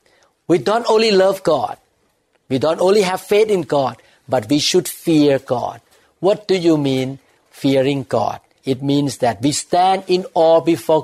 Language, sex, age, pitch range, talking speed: English, male, 60-79, 130-175 Hz, 170 wpm